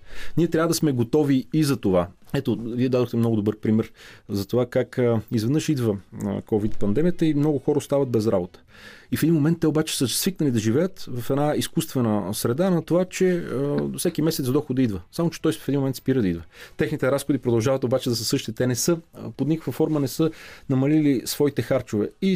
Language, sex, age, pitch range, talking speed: Bulgarian, male, 40-59, 115-140 Hz, 210 wpm